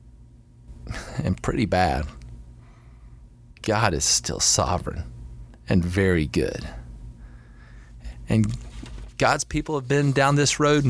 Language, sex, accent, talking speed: English, male, American, 100 wpm